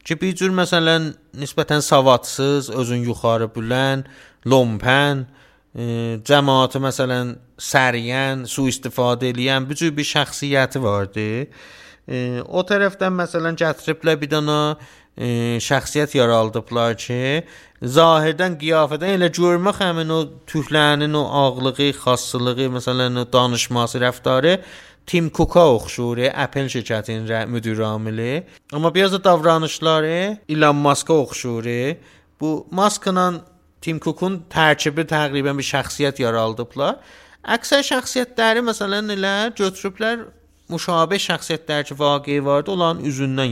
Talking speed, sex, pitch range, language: 110 wpm, male, 130-175 Hz, Persian